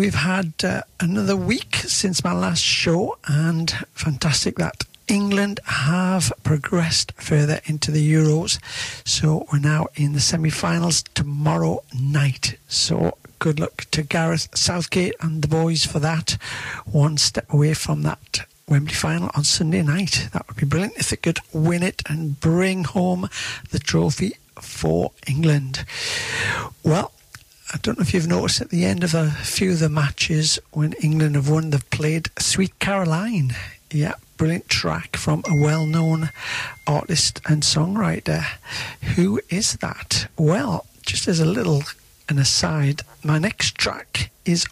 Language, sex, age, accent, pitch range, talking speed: English, male, 60-79, British, 140-170 Hz, 150 wpm